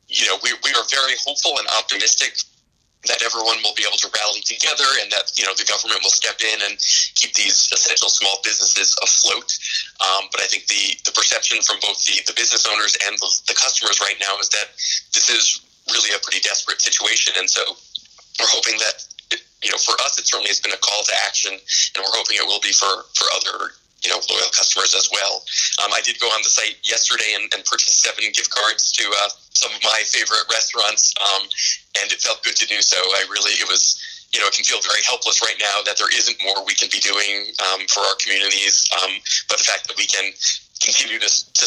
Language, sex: English, male